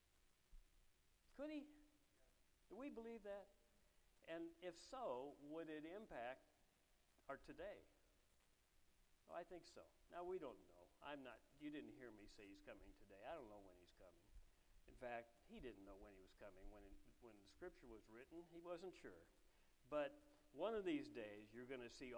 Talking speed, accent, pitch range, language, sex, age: 175 wpm, American, 105-170 Hz, English, male, 60-79